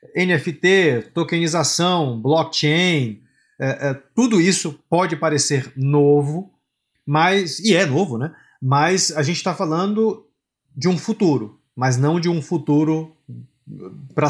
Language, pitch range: Portuguese, 140-175 Hz